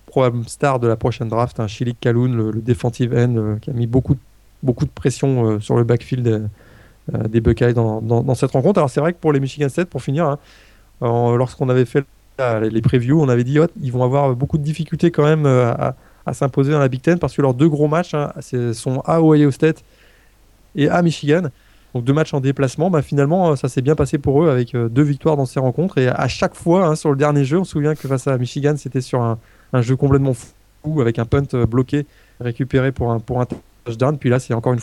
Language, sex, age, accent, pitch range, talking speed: French, male, 20-39, French, 115-140 Hz, 245 wpm